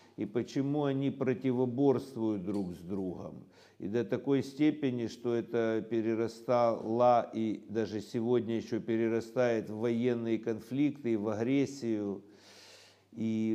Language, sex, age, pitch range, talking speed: Russian, male, 60-79, 110-135 Hz, 110 wpm